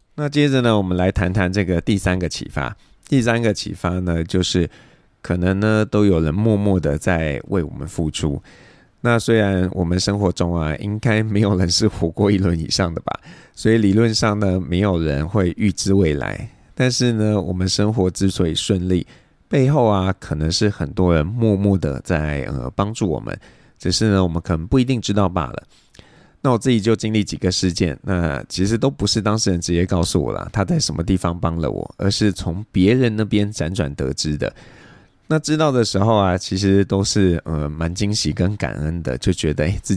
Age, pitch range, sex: 20-39, 85-110 Hz, male